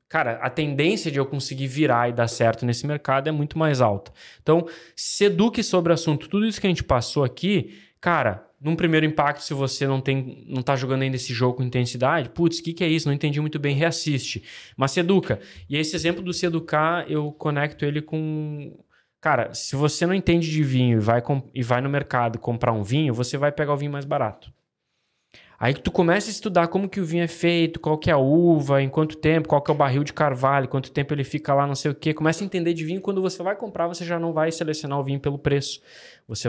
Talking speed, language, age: 245 wpm, Portuguese, 20-39